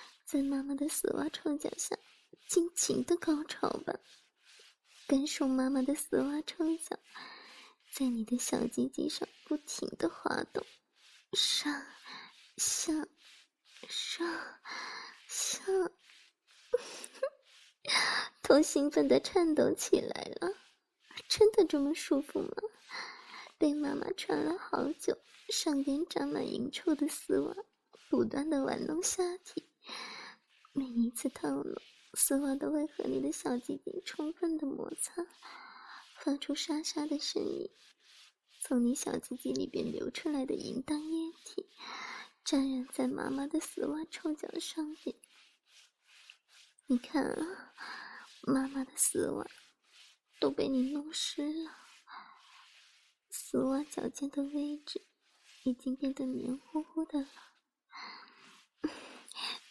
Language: English